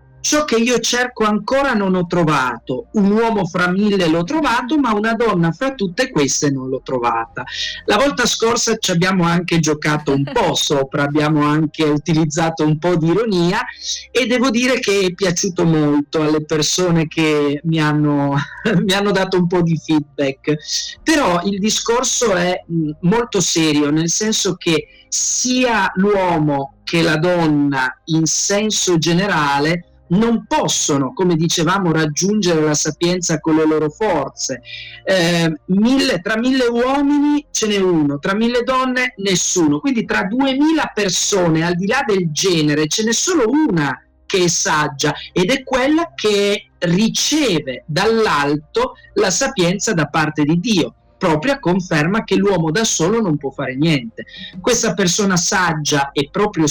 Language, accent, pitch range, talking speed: Italian, native, 150-215 Hz, 150 wpm